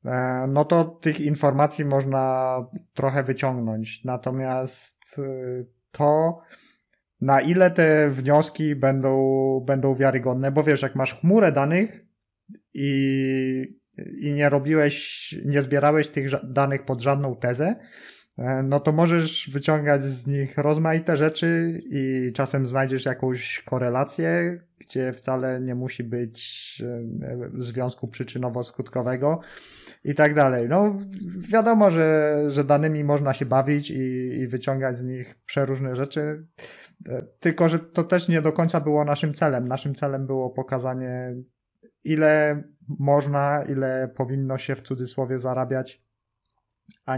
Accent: native